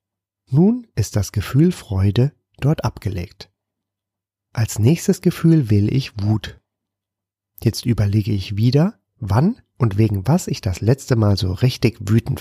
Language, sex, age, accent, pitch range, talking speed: German, male, 30-49, German, 100-130 Hz, 135 wpm